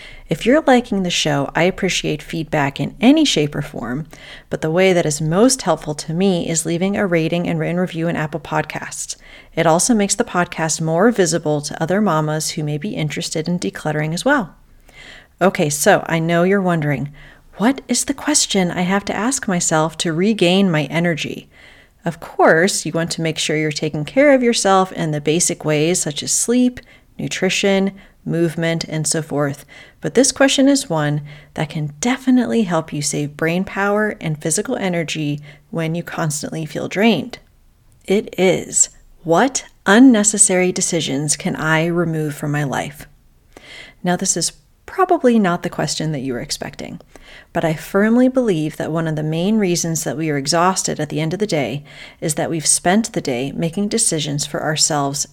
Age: 40-59